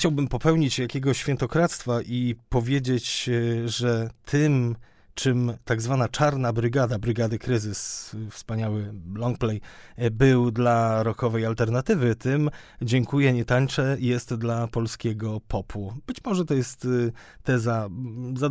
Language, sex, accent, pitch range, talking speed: Polish, male, native, 110-130 Hz, 115 wpm